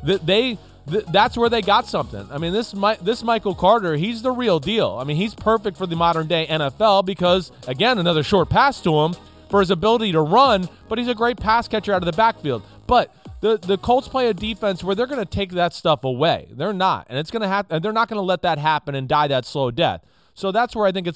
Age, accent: 30-49, American